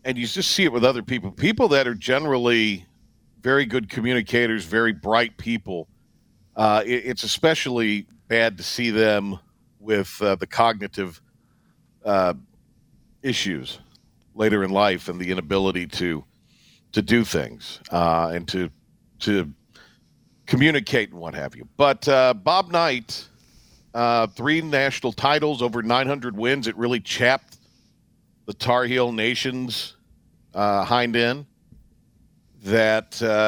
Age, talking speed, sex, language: 50-69, 130 wpm, male, English